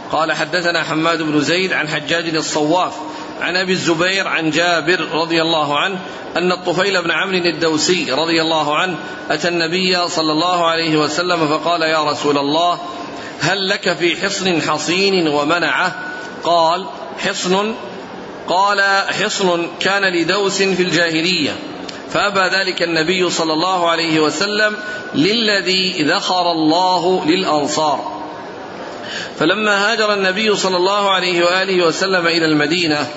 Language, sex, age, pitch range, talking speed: Arabic, male, 40-59, 160-185 Hz, 125 wpm